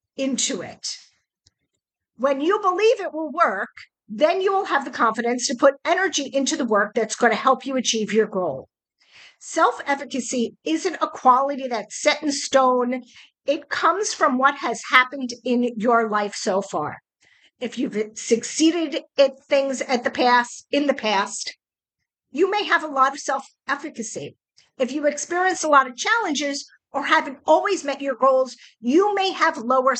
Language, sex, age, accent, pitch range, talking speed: English, female, 50-69, American, 230-295 Hz, 165 wpm